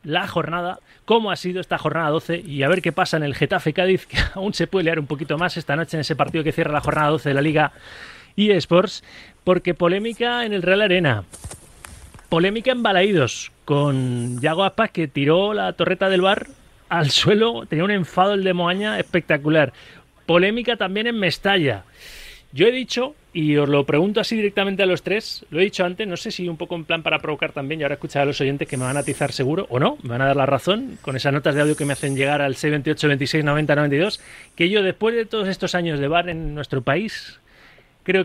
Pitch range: 150-195 Hz